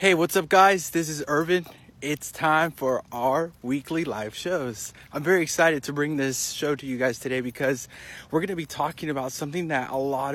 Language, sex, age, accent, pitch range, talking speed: English, male, 20-39, American, 135-180 Hz, 205 wpm